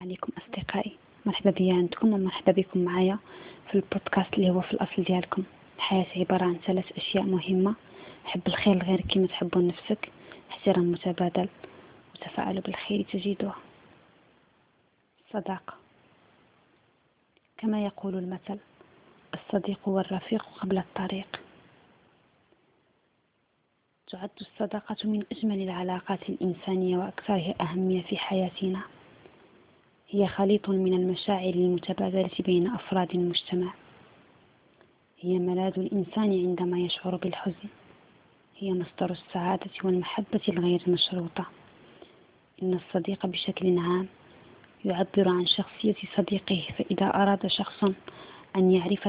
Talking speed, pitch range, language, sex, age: 100 wpm, 180-200 Hz, Arabic, female, 20-39